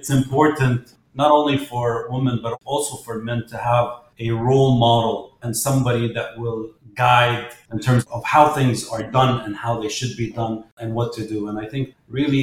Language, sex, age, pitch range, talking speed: English, male, 30-49, 115-135 Hz, 200 wpm